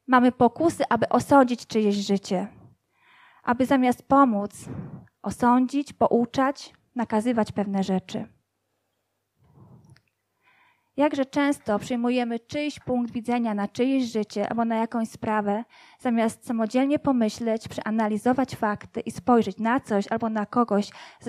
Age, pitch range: 20-39, 220-275 Hz